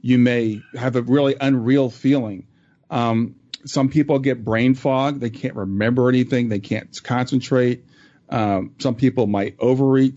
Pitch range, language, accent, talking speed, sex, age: 115-135 Hz, English, American, 150 wpm, male, 40-59